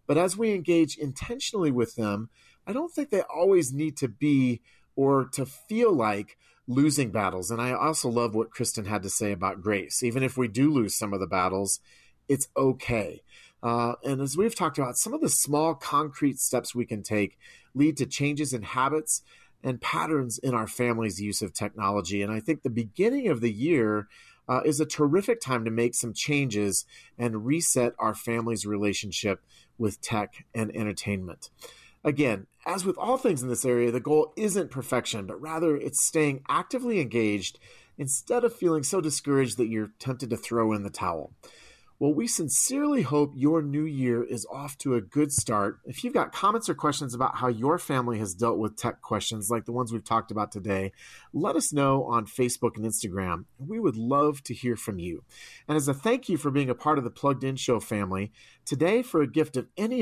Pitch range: 110-150 Hz